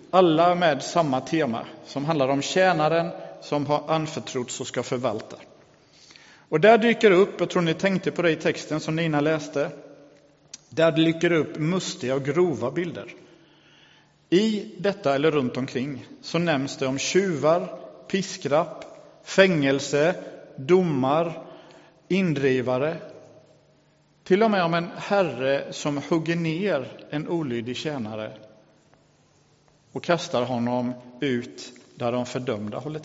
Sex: male